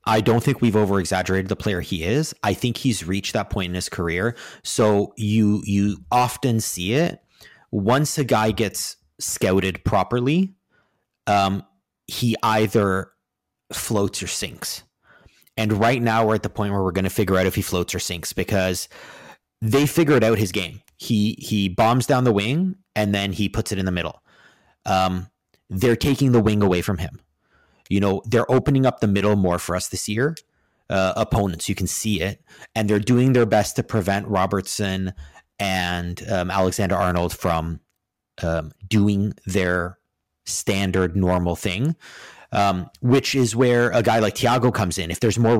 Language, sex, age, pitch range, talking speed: English, male, 30-49, 95-115 Hz, 170 wpm